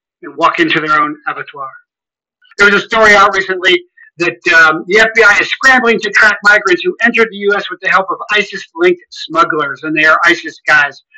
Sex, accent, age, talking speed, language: male, American, 50-69, 190 wpm, English